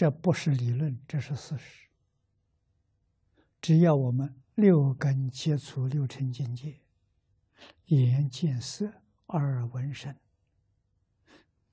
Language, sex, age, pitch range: Chinese, male, 60-79, 100-145 Hz